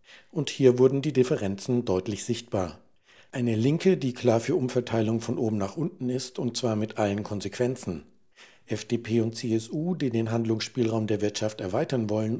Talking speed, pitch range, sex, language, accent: 160 wpm, 110-130 Hz, male, German, German